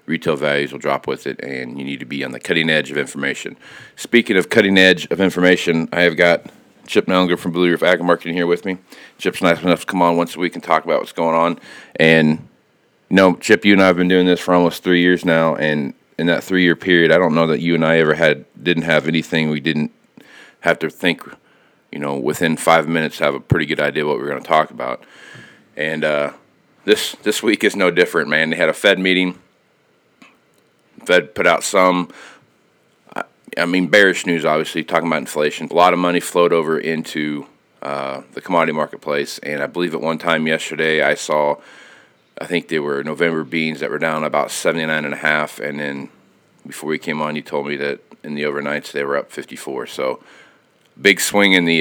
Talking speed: 220 wpm